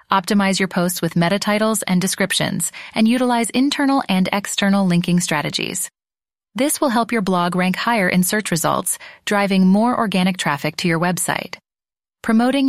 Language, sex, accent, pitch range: English, female, American, 180-230 Hz